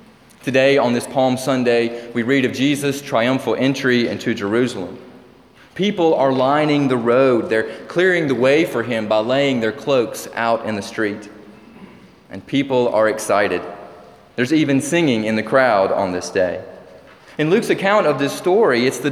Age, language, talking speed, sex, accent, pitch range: 30-49, English, 165 wpm, male, American, 120-140 Hz